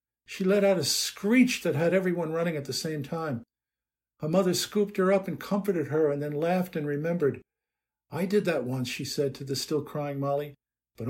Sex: male